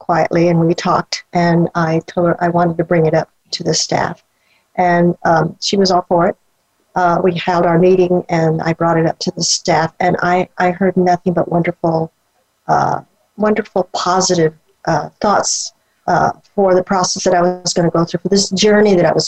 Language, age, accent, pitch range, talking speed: English, 50-69, American, 170-210 Hz, 205 wpm